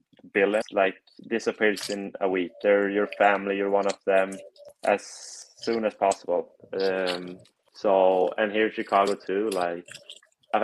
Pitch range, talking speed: 95-105 Hz, 145 wpm